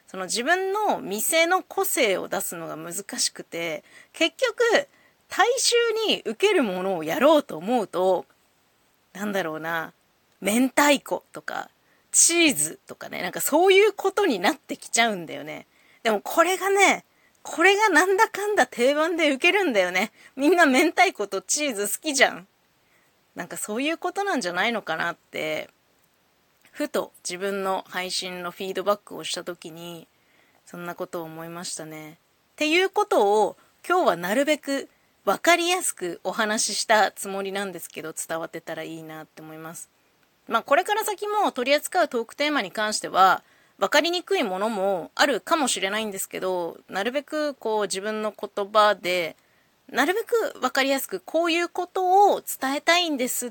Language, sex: Japanese, female